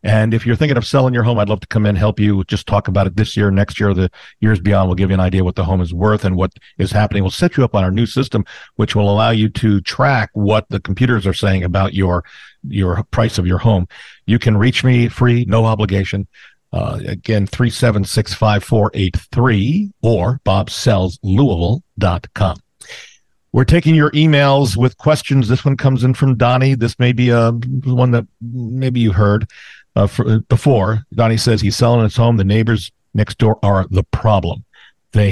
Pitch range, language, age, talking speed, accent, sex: 100-120 Hz, English, 50-69, 210 wpm, American, male